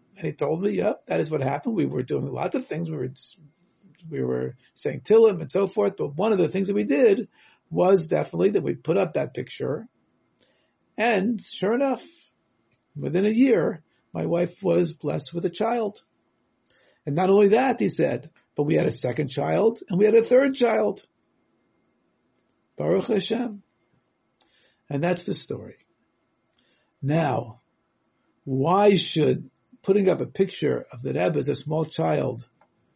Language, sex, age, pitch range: English, male, 50-69, 135-195 Hz